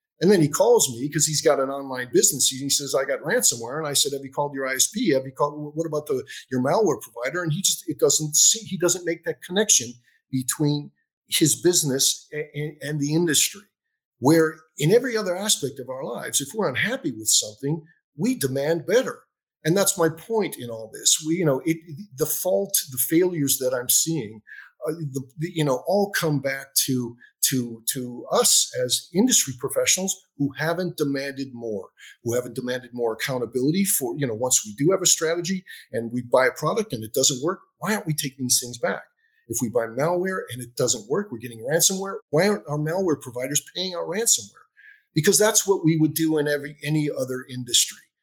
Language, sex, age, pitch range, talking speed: English, male, 50-69, 130-175 Hz, 205 wpm